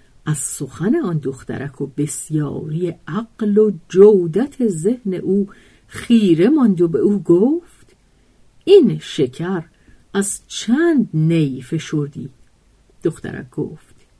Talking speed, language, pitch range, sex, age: 105 wpm, Persian, 155-225 Hz, female, 50-69